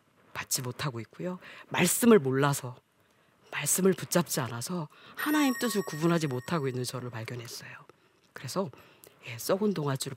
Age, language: 40-59, Korean